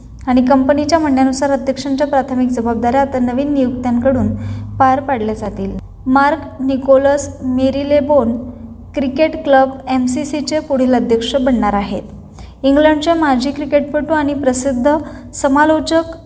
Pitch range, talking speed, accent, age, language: 250-290 Hz, 105 wpm, native, 20-39, Marathi